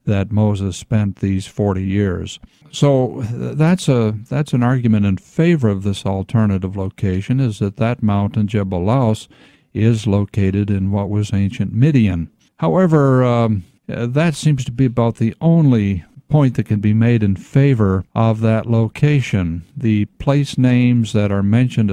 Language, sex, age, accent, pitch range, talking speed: English, male, 60-79, American, 100-130 Hz, 155 wpm